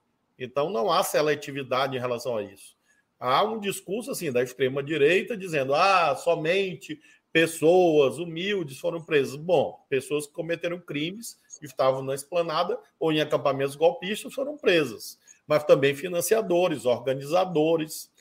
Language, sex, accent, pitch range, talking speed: Portuguese, male, Brazilian, 135-190 Hz, 130 wpm